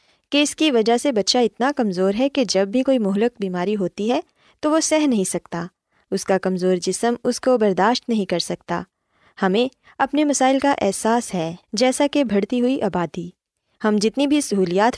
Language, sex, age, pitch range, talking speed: Urdu, female, 20-39, 185-255 Hz, 190 wpm